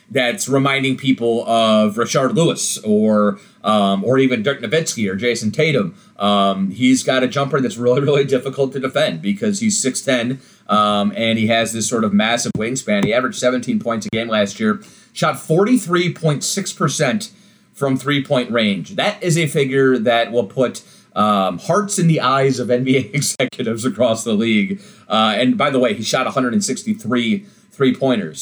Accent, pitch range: American, 115-165 Hz